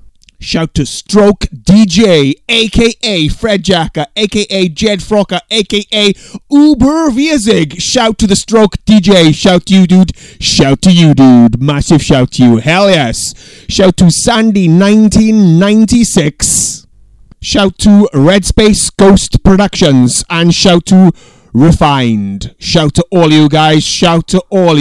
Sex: male